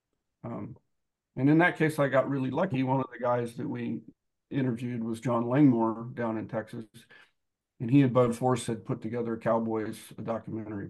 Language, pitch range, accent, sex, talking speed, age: English, 115-135 Hz, American, male, 180 wpm, 50-69